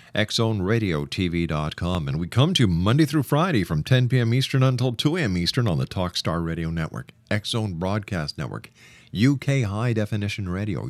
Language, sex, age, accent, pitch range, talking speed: English, male, 50-69, American, 95-135 Hz, 170 wpm